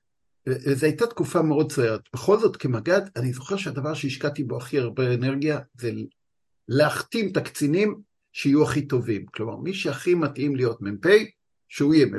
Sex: male